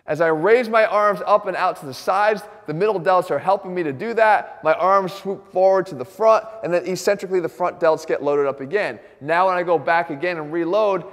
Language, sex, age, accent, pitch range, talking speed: English, male, 20-39, American, 155-205 Hz, 245 wpm